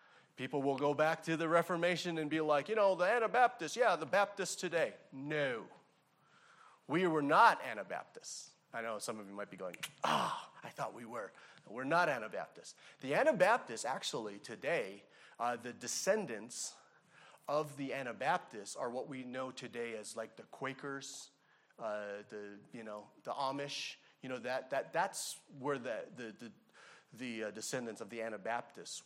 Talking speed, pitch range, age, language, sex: 160 wpm, 120-170 Hz, 30-49, English, male